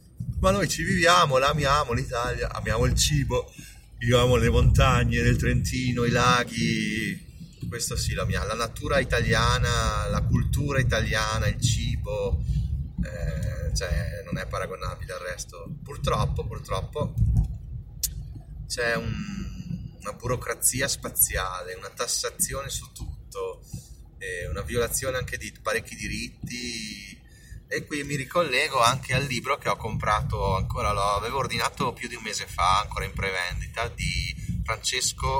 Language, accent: Italian, native